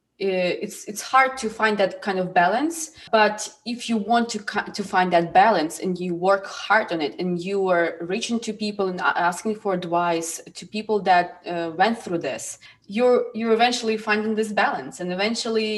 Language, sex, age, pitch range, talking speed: English, female, 20-39, 175-220 Hz, 185 wpm